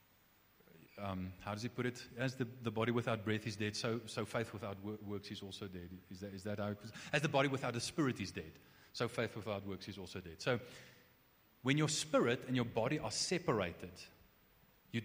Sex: male